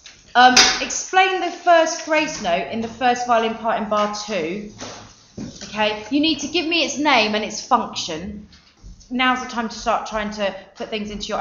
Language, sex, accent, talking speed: English, female, British, 190 wpm